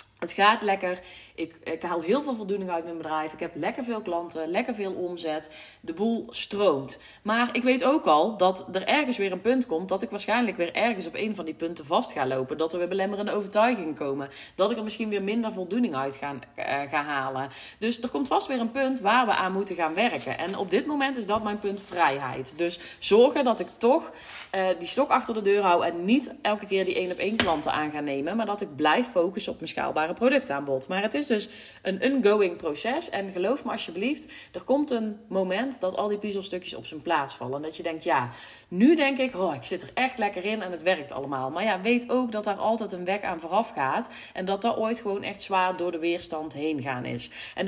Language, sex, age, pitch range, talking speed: Dutch, female, 20-39, 170-230 Hz, 230 wpm